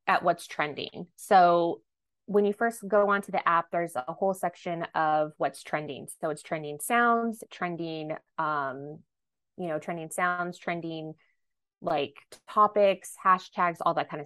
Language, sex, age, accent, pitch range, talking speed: English, female, 20-39, American, 160-190 Hz, 145 wpm